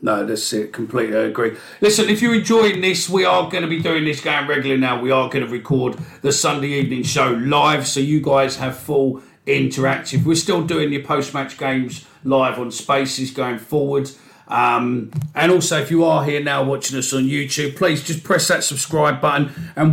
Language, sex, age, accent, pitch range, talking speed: English, male, 40-59, British, 125-155 Hz, 200 wpm